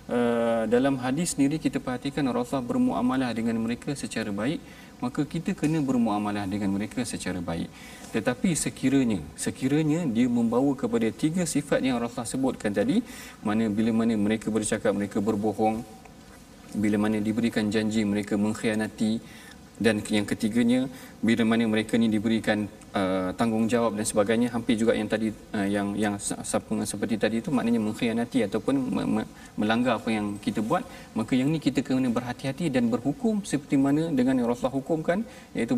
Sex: male